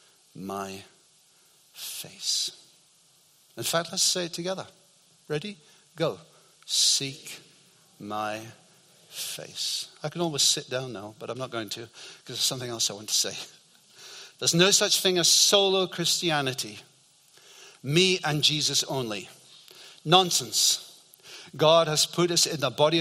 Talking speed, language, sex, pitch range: 135 wpm, English, male, 135-190 Hz